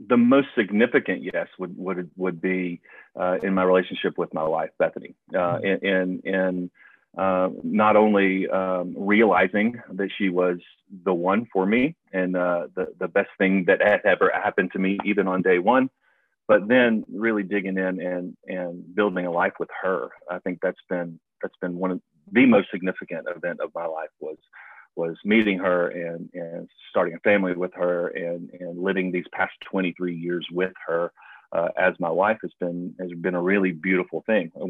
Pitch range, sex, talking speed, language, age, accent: 90-105 Hz, male, 185 wpm, English, 40-59, American